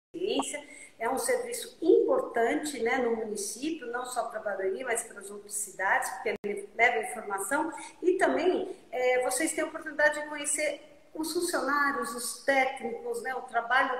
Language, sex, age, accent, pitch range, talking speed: Portuguese, female, 50-69, Brazilian, 230-320 Hz, 155 wpm